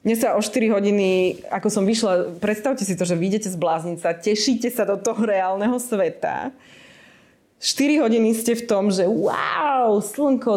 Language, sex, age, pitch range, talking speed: Czech, female, 20-39, 170-200 Hz, 165 wpm